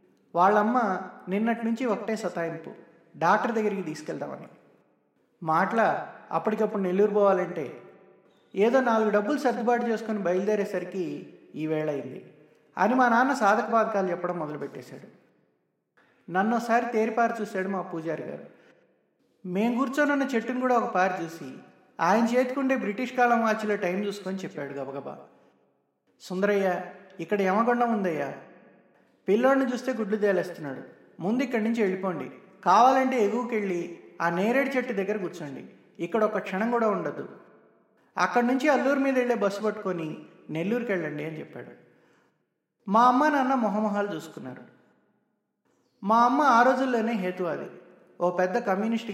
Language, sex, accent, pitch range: Telugu, male, native, 180-235 Hz